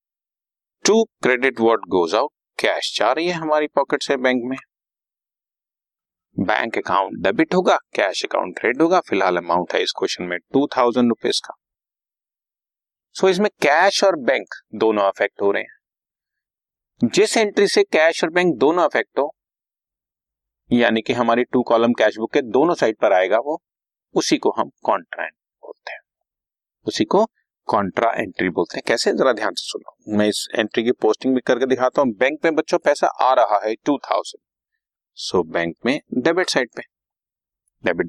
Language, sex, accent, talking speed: Hindi, male, native, 110 wpm